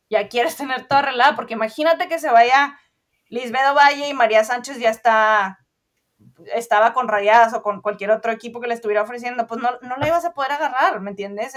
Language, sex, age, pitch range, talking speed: Spanish, female, 20-39, 200-245 Hz, 200 wpm